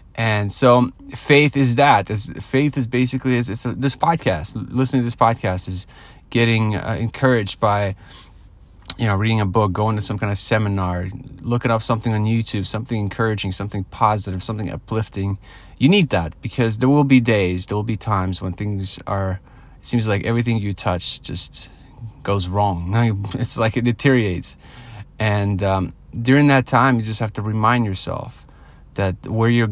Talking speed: 175 wpm